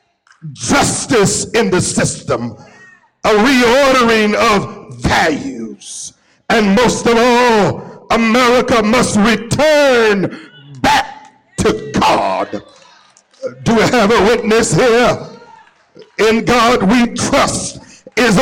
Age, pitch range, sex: 60-79, 225-300 Hz, male